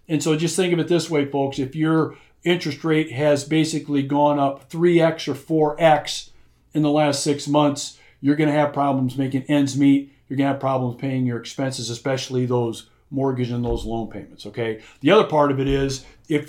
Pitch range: 130-155 Hz